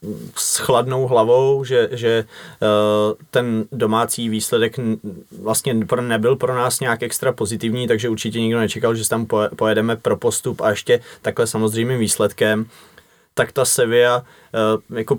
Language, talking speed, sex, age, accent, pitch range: Czech, 130 wpm, male, 20-39, native, 110-125 Hz